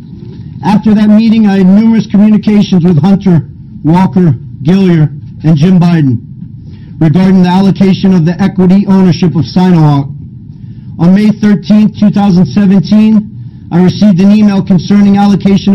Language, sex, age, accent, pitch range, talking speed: English, male, 50-69, American, 155-200 Hz, 125 wpm